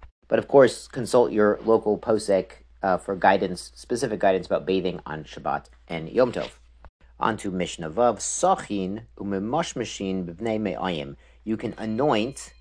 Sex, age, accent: male, 40-59, American